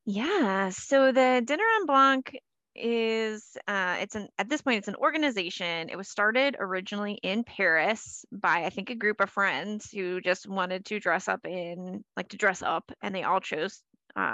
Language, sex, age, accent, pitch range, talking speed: English, female, 20-39, American, 180-225 Hz, 190 wpm